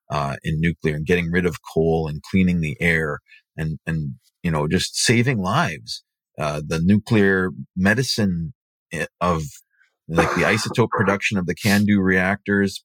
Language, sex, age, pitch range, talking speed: English, male, 40-59, 85-100 Hz, 155 wpm